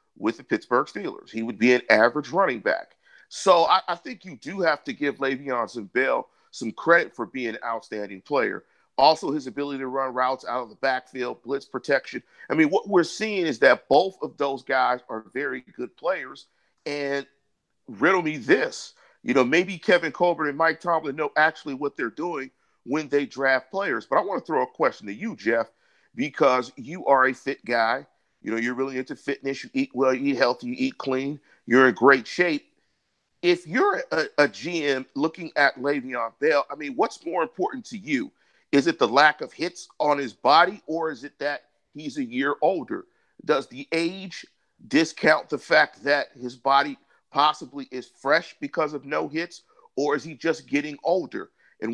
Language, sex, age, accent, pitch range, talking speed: English, male, 50-69, American, 130-170 Hz, 195 wpm